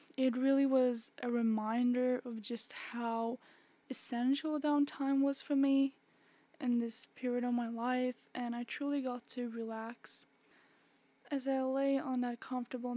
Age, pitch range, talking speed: 10-29, 235-265 Hz, 145 wpm